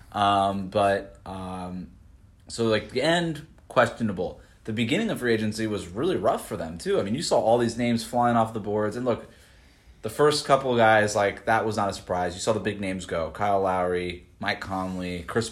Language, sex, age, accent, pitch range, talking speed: English, male, 20-39, American, 95-120 Hz, 210 wpm